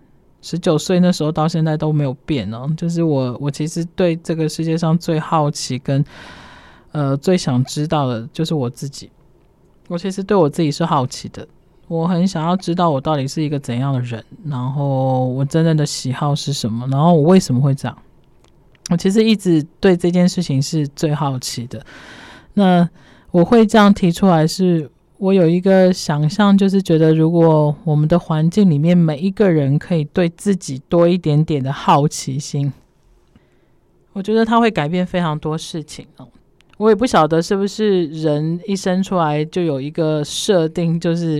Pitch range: 150-180 Hz